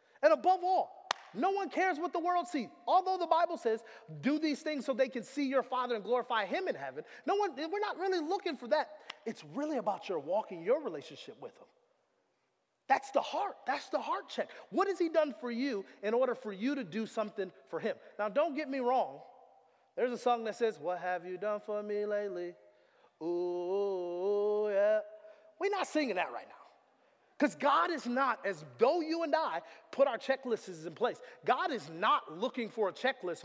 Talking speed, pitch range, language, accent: 205 wpm, 215-325 Hz, English, American